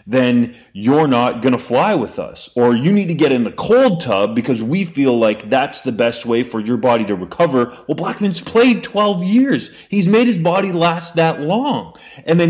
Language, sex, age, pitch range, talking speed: English, male, 30-49, 110-170 Hz, 210 wpm